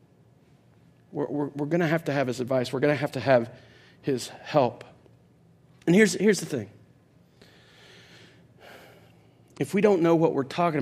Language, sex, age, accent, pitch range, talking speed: English, male, 40-59, American, 140-225 Hz, 155 wpm